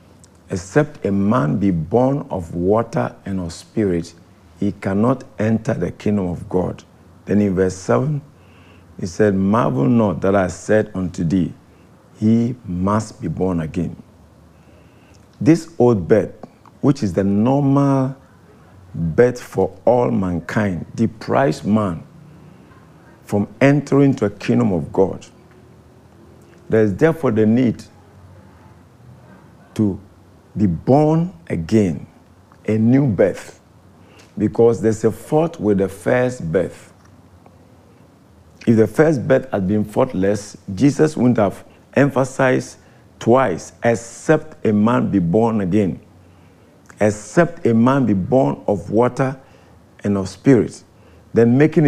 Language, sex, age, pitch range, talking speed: English, male, 50-69, 95-125 Hz, 120 wpm